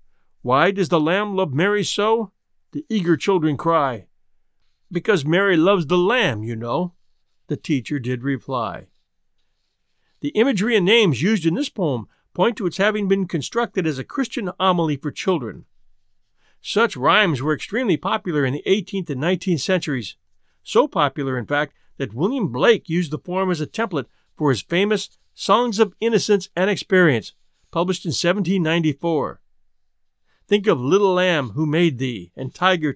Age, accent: 50-69, American